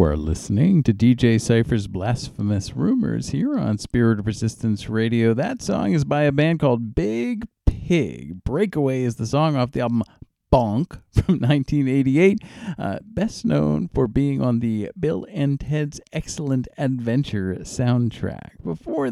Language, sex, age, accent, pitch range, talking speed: English, male, 50-69, American, 110-145 Hz, 145 wpm